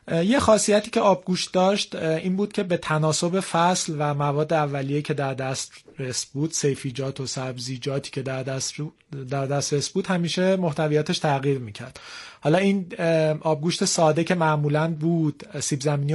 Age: 30-49